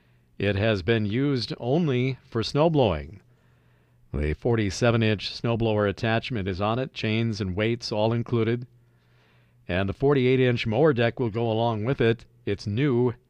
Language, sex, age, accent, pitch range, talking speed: English, male, 50-69, American, 90-120 Hz, 140 wpm